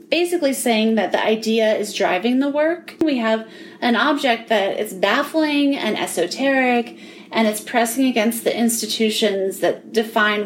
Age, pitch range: 30-49, 220-260 Hz